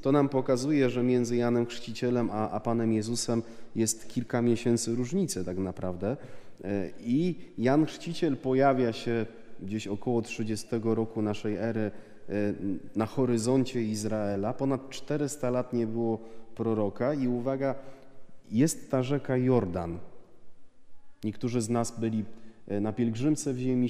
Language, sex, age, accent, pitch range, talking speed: Polish, male, 30-49, native, 110-130 Hz, 130 wpm